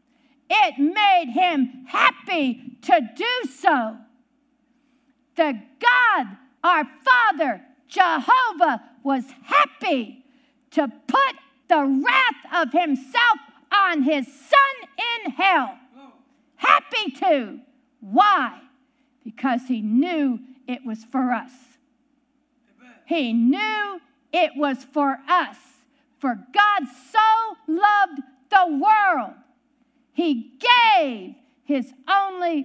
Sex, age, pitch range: female, 50-69, 255-340 Hz